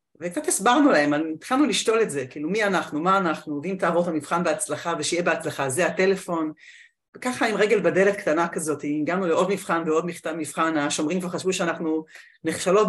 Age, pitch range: 40-59, 165-230 Hz